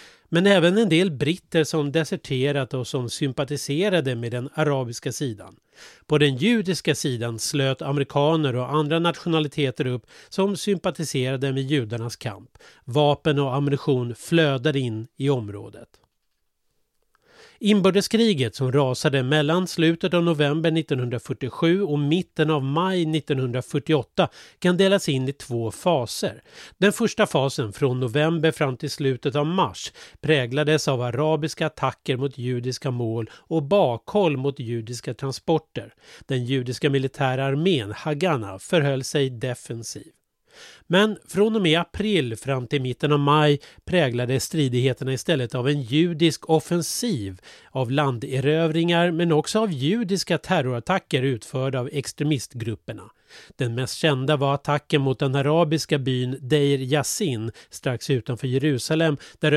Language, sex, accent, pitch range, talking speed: Swedish, male, native, 130-165 Hz, 130 wpm